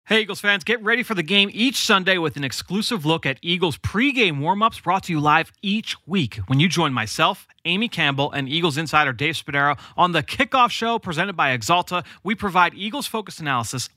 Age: 30-49